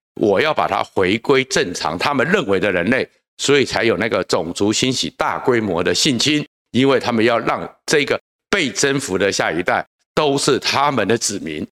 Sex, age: male, 60-79